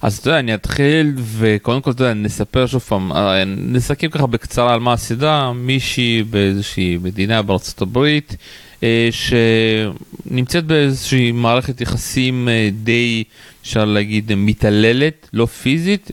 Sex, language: male, Hebrew